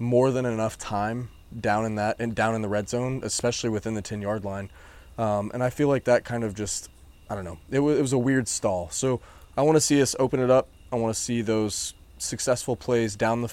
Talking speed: 240 wpm